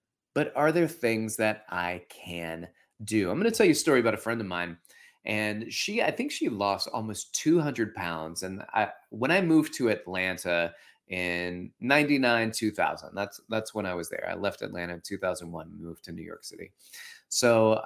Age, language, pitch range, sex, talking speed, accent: 30-49, English, 105-160 Hz, male, 180 wpm, American